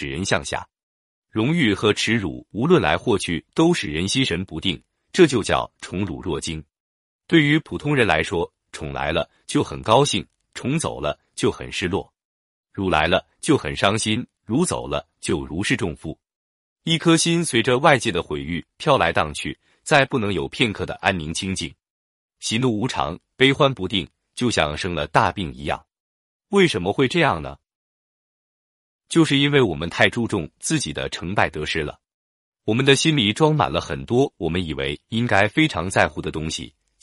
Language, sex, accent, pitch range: Chinese, male, native, 85-140 Hz